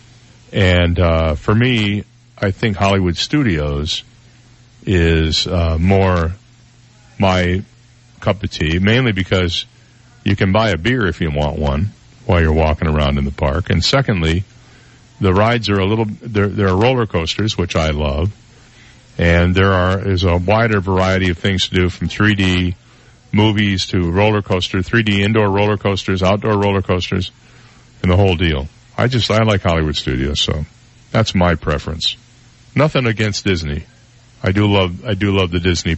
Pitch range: 85-115 Hz